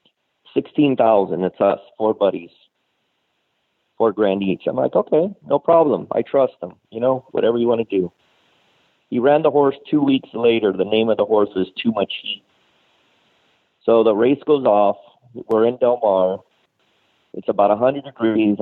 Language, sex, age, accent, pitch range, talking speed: English, male, 50-69, American, 110-135 Hz, 170 wpm